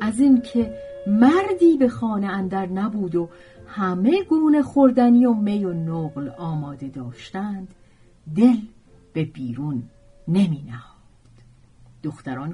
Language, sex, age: Persian, female, 40-59